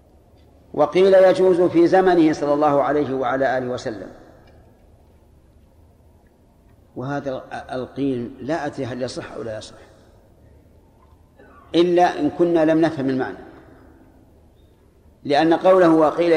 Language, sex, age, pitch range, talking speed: Arabic, male, 50-69, 115-165 Hz, 105 wpm